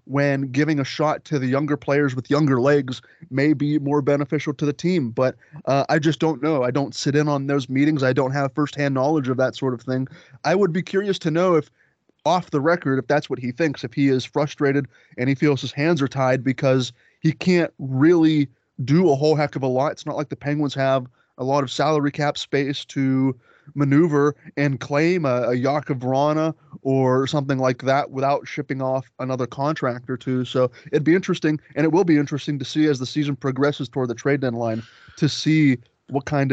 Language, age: English, 20-39